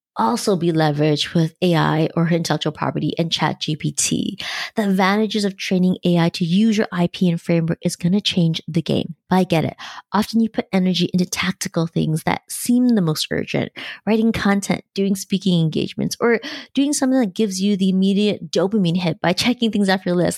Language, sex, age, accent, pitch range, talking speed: English, female, 20-39, American, 170-210 Hz, 190 wpm